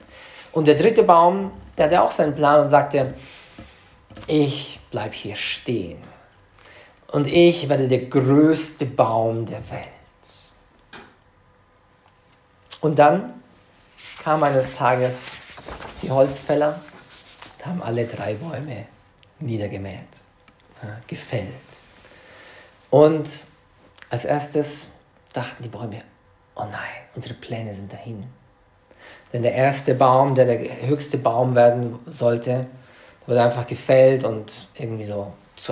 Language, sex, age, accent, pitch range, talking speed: English, male, 50-69, German, 110-150 Hz, 110 wpm